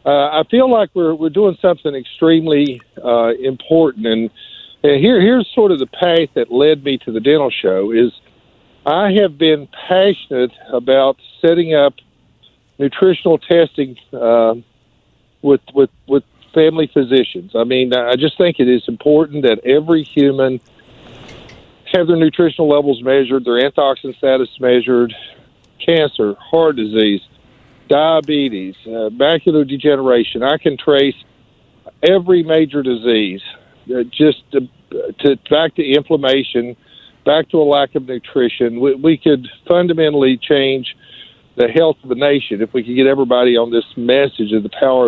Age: 50-69